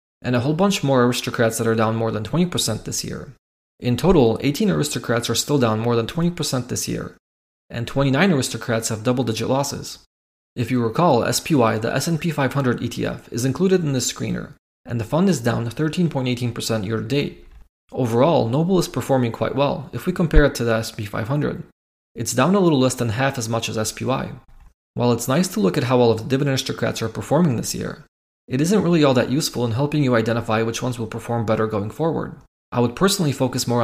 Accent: Canadian